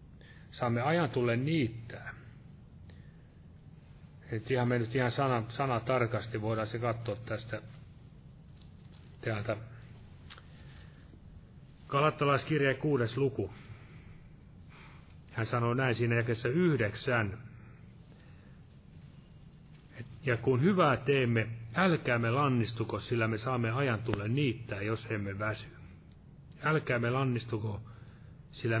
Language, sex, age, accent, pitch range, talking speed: Finnish, male, 30-49, native, 110-135 Hz, 90 wpm